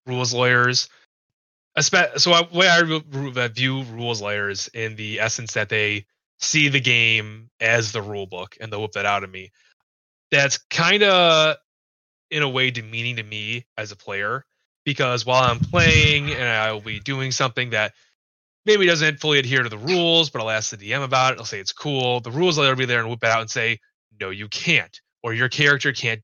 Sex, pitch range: male, 110-145 Hz